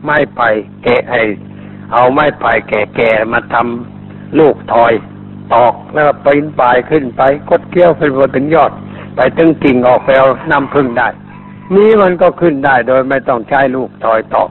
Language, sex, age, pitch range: Thai, male, 60-79, 125-150 Hz